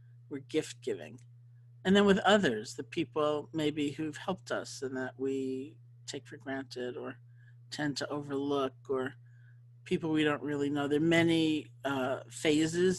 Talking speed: 155 wpm